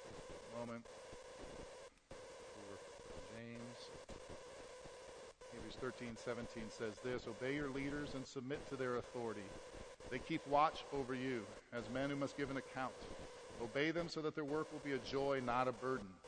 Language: English